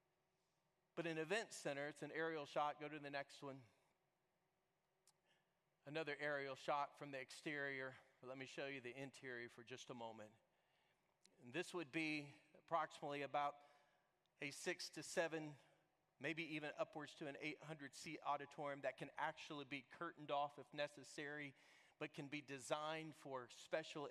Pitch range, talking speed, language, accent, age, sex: 135-170 Hz, 145 wpm, English, American, 40-59, male